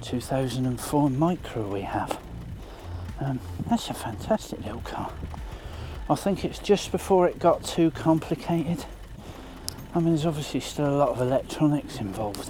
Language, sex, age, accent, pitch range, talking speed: English, male, 40-59, British, 105-155 Hz, 140 wpm